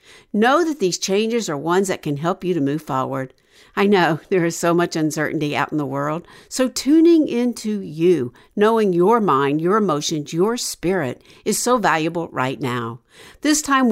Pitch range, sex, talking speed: 165-255 Hz, female, 180 wpm